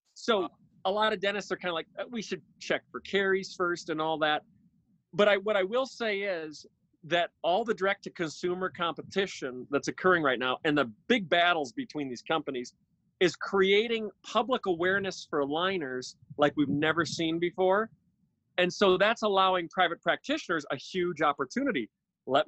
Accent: American